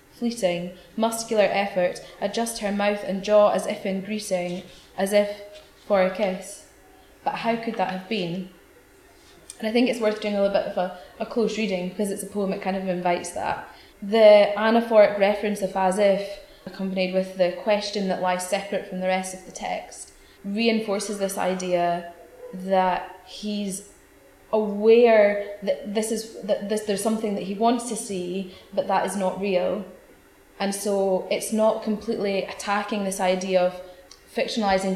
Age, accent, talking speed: 20-39, British, 170 wpm